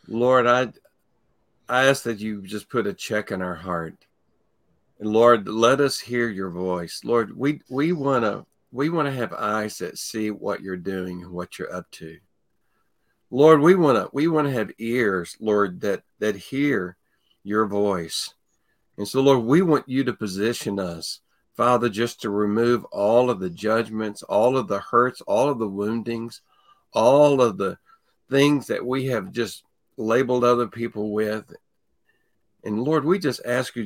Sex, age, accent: male, 60-79, American